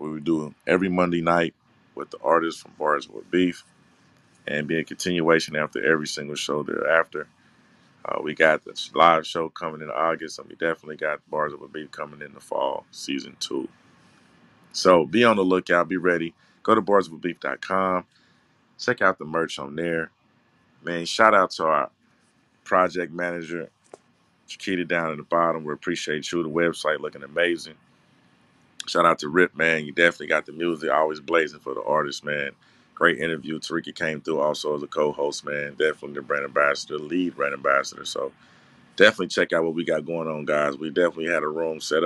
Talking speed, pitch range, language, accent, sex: 185 wpm, 80-85 Hz, English, American, male